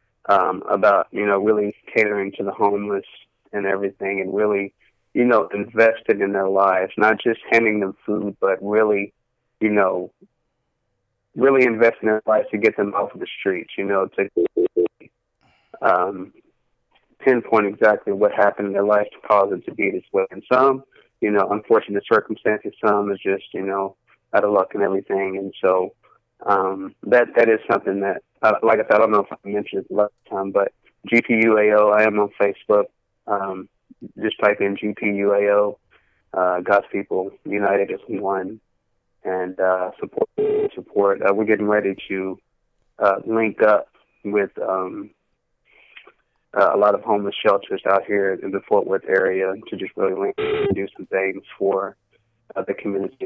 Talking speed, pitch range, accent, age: 170 wpm, 100-115 Hz, American, 20-39